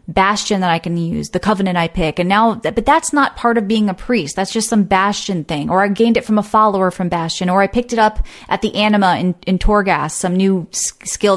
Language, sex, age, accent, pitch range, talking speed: English, female, 30-49, American, 185-230 Hz, 250 wpm